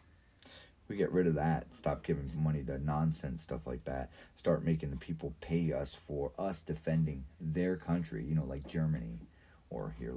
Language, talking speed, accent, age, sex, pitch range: English, 175 wpm, American, 30-49, male, 75-85 Hz